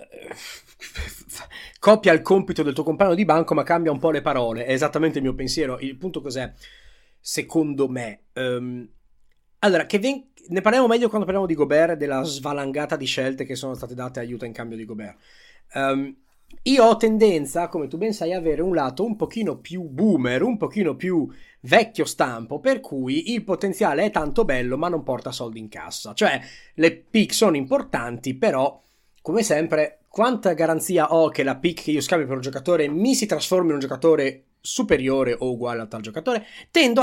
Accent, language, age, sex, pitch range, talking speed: native, Italian, 30-49, male, 130-190 Hz, 185 wpm